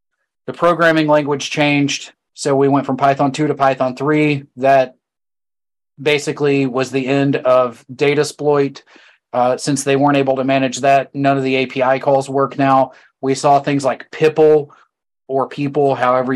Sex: male